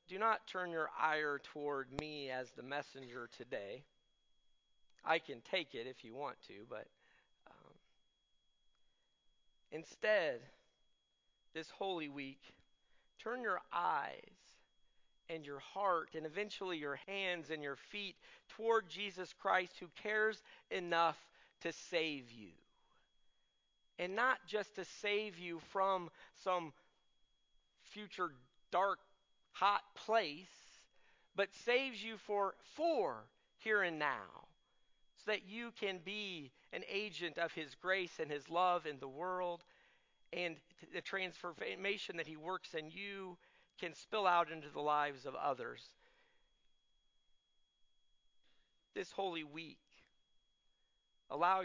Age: 40-59